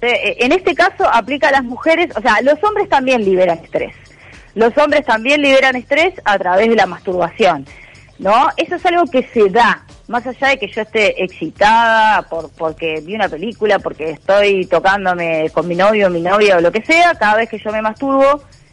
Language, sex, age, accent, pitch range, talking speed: Spanish, female, 30-49, Argentinian, 185-285 Hz, 195 wpm